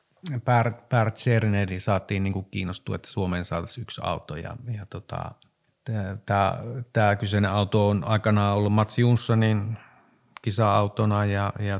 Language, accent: Finnish, native